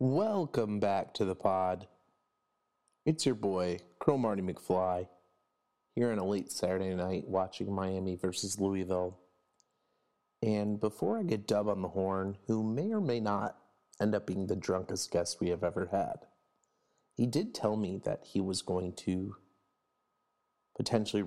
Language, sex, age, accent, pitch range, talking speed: English, male, 30-49, American, 95-115 Hz, 150 wpm